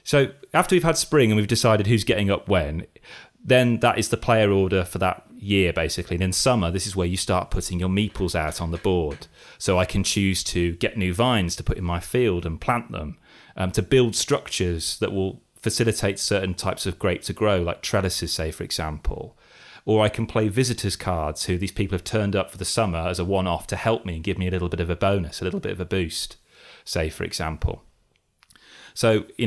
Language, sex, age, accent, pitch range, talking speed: English, male, 30-49, British, 90-110 Hz, 230 wpm